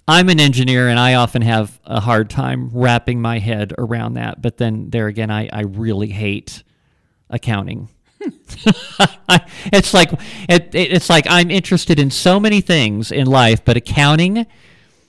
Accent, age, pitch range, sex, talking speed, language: American, 40-59, 110-150 Hz, male, 155 wpm, English